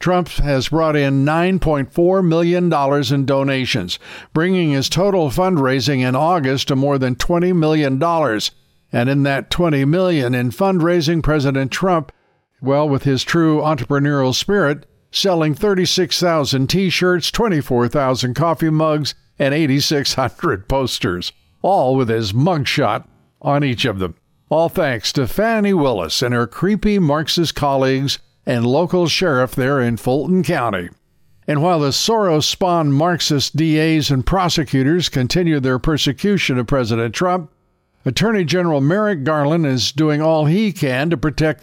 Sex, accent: male, American